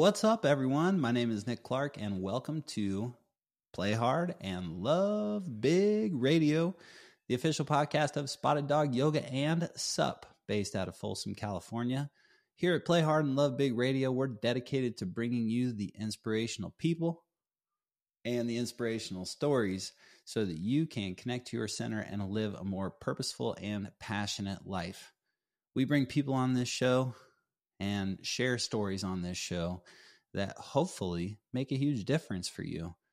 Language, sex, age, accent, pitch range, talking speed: English, male, 30-49, American, 105-145 Hz, 160 wpm